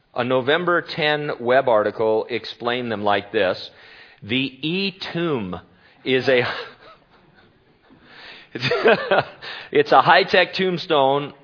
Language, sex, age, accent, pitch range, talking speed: English, male, 40-59, American, 105-140 Hz, 85 wpm